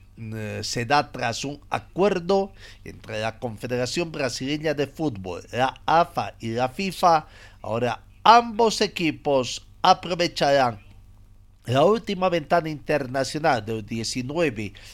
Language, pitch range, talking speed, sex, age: Spanish, 110-155 Hz, 105 wpm, male, 50-69